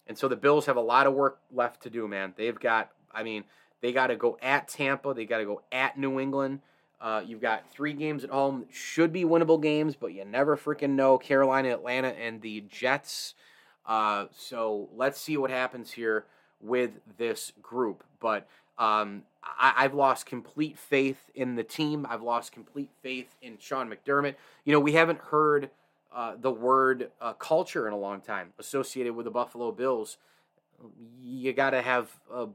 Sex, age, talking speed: male, 30-49, 190 wpm